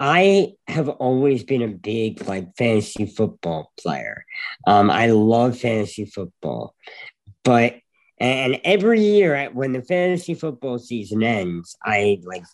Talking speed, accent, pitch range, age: 130 wpm, American, 110-150 Hz, 50-69